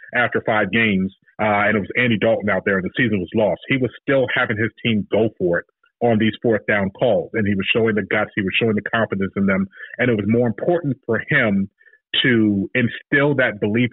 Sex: male